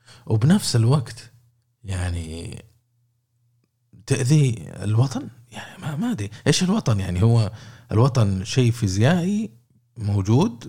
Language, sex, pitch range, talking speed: Arabic, male, 110-140 Hz, 90 wpm